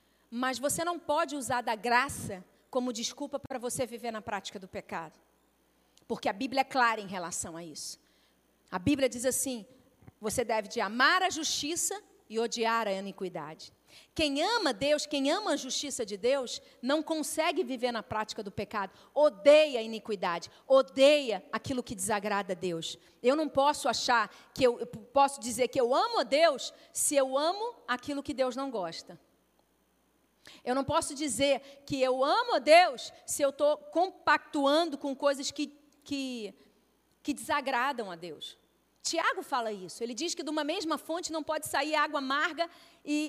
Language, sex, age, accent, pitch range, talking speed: Portuguese, female, 40-59, Brazilian, 235-320 Hz, 170 wpm